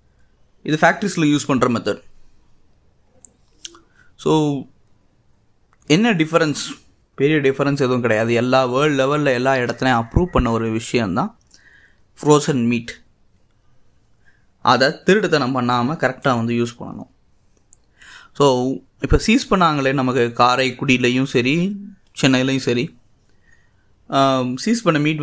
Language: Tamil